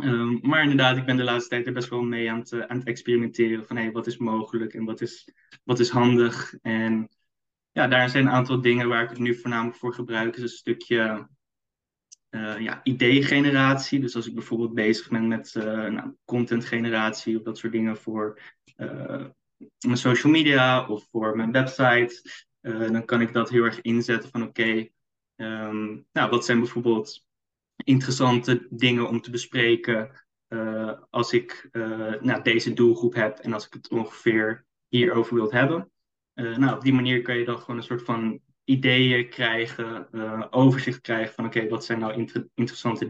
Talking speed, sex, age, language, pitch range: 190 wpm, male, 20-39, Dutch, 115-125 Hz